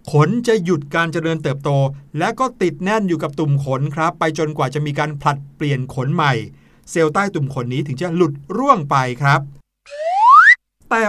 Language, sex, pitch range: Thai, male, 145-185 Hz